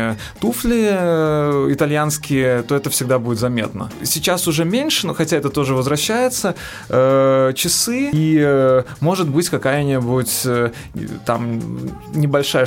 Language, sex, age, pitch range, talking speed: Russian, male, 20-39, 130-165 Hz, 105 wpm